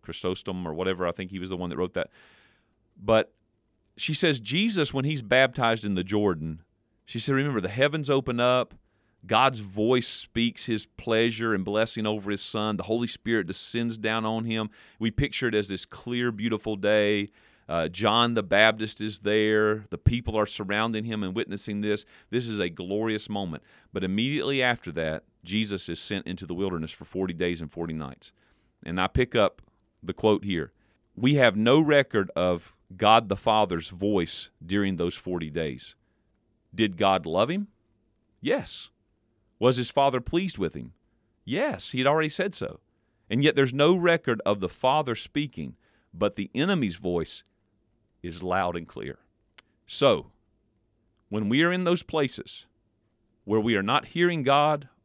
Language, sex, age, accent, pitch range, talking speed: English, male, 40-59, American, 100-120 Hz, 170 wpm